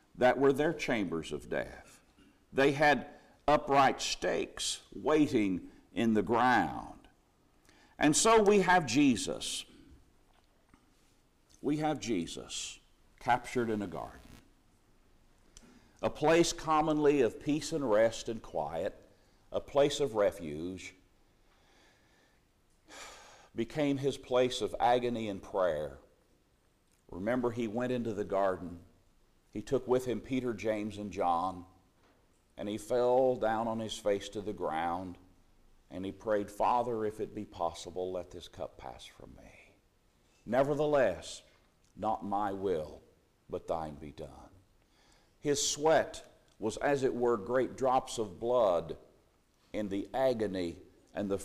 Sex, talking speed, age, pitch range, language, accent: male, 125 wpm, 50-69, 95-135 Hz, English, American